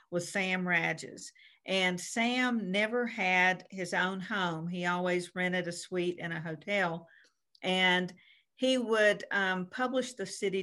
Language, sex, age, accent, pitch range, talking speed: English, female, 50-69, American, 180-225 Hz, 140 wpm